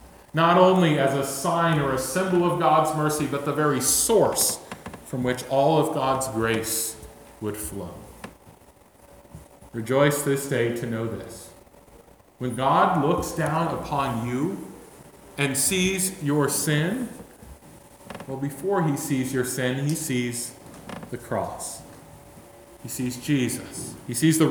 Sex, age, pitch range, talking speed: male, 40-59, 115-155 Hz, 135 wpm